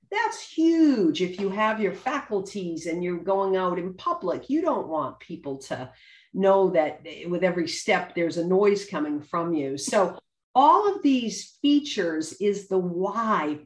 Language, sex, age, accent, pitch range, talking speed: English, female, 50-69, American, 165-215 Hz, 165 wpm